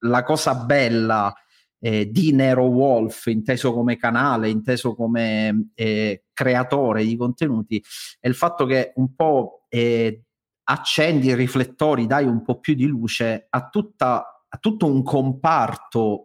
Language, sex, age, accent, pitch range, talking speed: Italian, male, 40-59, native, 115-140 Hz, 135 wpm